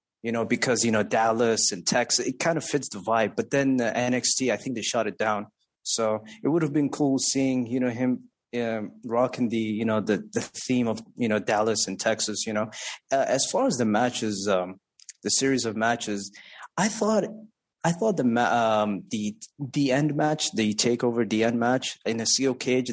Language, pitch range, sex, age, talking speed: English, 110-135 Hz, male, 20-39, 210 wpm